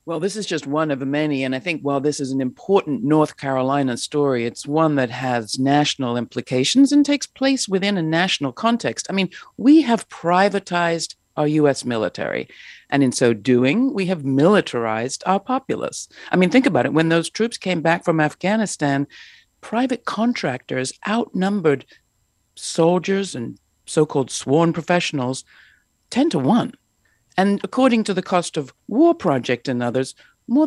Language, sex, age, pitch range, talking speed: English, female, 60-79, 145-205 Hz, 160 wpm